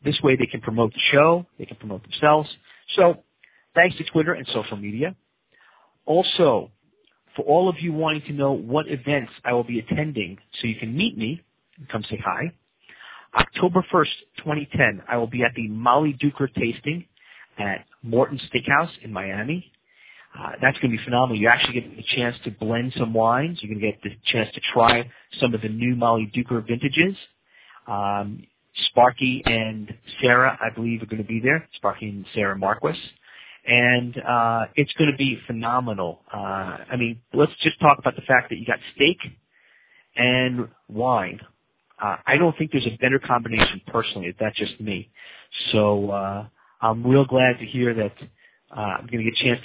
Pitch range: 115-145 Hz